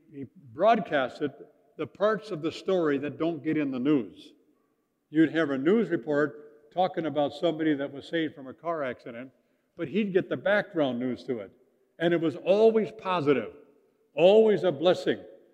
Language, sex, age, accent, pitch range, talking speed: English, male, 60-79, American, 145-195 Hz, 170 wpm